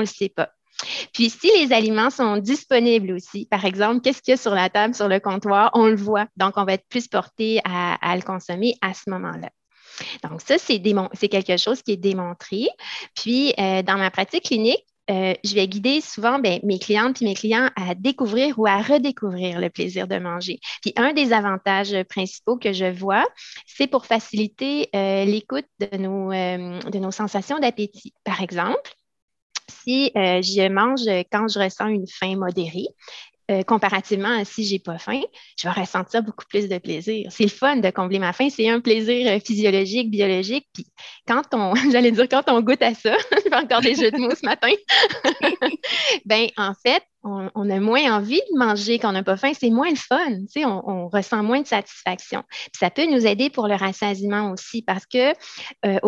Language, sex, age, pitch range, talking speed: French, female, 30-49, 195-245 Hz, 195 wpm